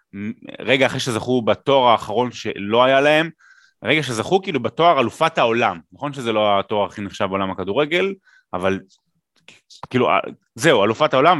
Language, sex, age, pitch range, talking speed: Hebrew, male, 30-49, 100-135 Hz, 140 wpm